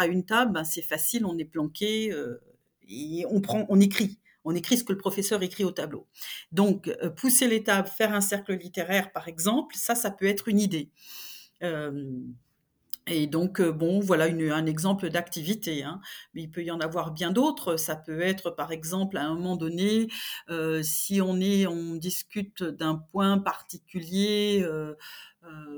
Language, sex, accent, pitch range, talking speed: French, female, French, 160-195 Hz, 170 wpm